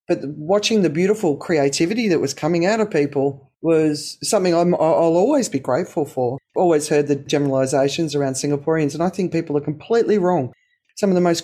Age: 40-59